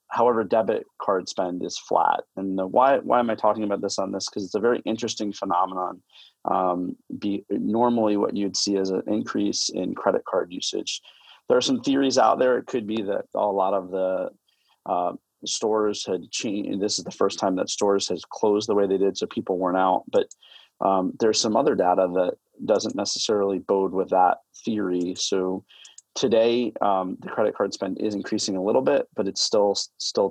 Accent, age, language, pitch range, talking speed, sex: American, 30-49, English, 95-110 Hz, 200 wpm, male